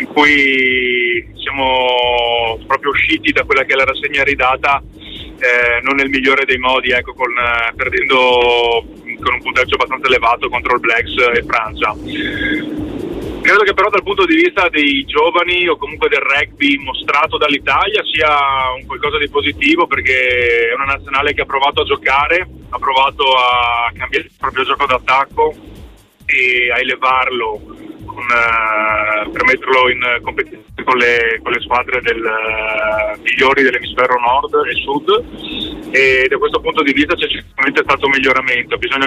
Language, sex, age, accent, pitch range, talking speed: Italian, male, 30-49, native, 125-175 Hz, 150 wpm